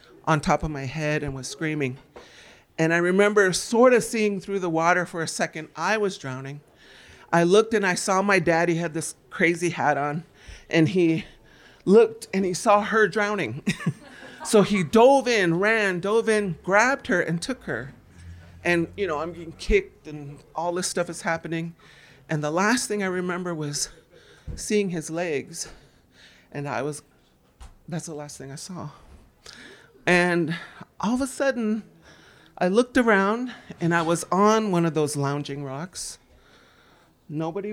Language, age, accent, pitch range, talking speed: English, 40-59, American, 150-205 Hz, 165 wpm